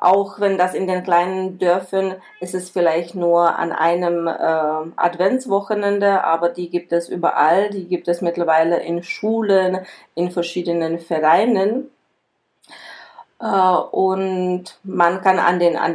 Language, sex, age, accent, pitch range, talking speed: Czech, female, 30-49, German, 160-185 Hz, 130 wpm